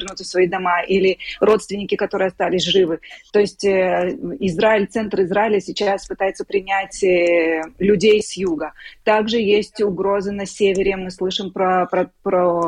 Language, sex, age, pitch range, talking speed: Russian, female, 30-49, 185-210 Hz, 135 wpm